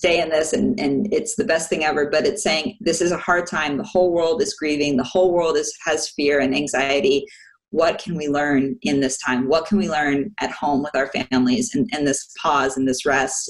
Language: English